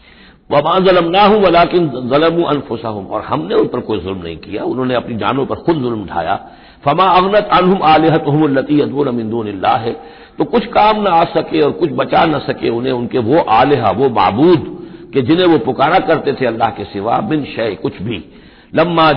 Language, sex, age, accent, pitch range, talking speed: Hindi, male, 60-79, native, 120-170 Hz, 190 wpm